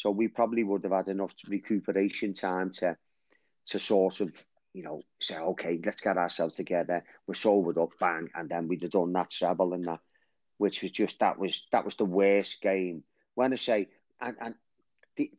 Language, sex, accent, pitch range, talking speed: English, male, British, 100-140 Hz, 190 wpm